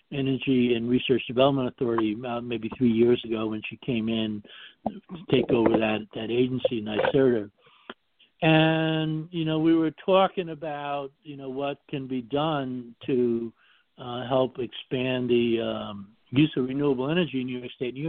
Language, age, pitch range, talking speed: English, 60-79, 115-145 Hz, 165 wpm